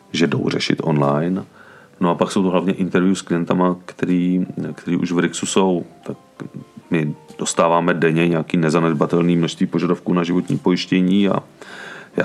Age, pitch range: 40-59, 80-90 Hz